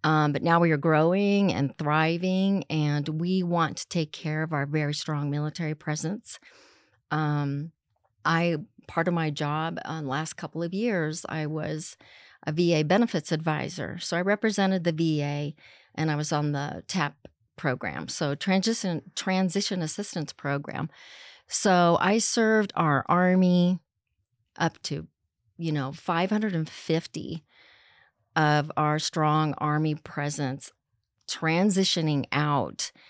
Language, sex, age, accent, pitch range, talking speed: English, female, 40-59, American, 145-170 Hz, 135 wpm